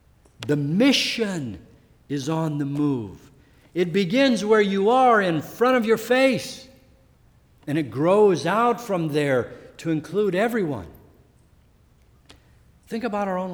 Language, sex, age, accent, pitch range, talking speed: English, male, 60-79, American, 110-165 Hz, 130 wpm